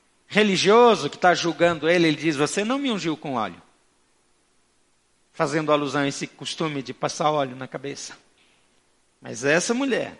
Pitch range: 165-245 Hz